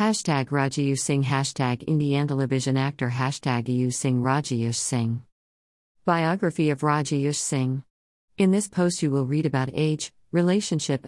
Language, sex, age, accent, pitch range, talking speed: English, female, 50-69, American, 130-165 Hz, 130 wpm